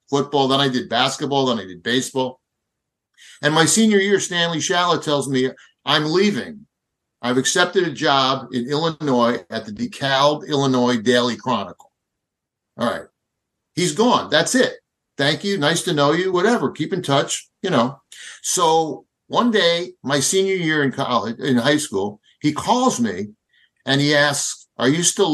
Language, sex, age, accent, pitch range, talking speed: English, male, 50-69, American, 125-160 Hz, 165 wpm